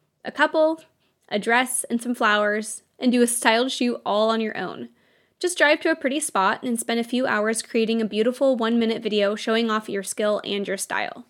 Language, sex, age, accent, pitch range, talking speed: English, female, 20-39, American, 215-275 Hz, 205 wpm